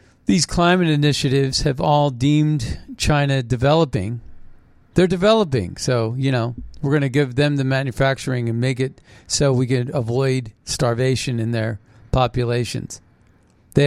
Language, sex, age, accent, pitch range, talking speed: English, male, 40-59, American, 120-150 Hz, 140 wpm